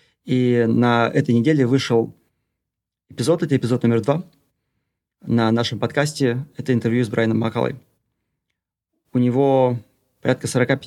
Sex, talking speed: male, 120 wpm